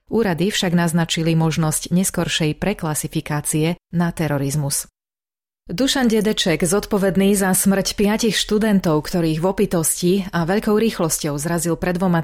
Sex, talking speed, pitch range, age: female, 120 wpm, 160-195 Hz, 30-49